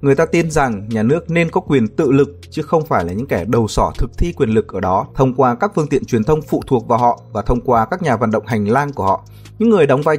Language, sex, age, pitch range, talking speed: Vietnamese, male, 20-39, 115-155 Hz, 300 wpm